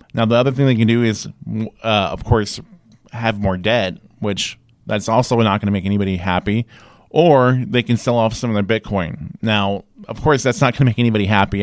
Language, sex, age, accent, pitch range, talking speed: English, male, 30-49, American, 100-130 Hz, 215 wpm